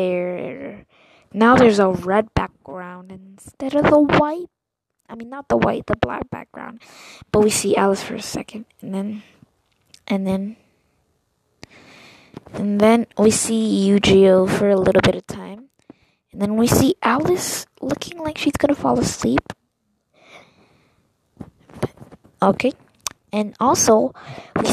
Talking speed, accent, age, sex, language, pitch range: 135 wpm, American, 20-39, female, English, 195-235 Hz